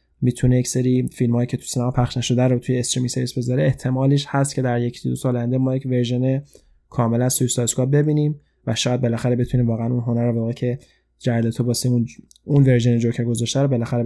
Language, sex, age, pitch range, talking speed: Persian, male, 20-39, 125-145 Hz, 205 wpm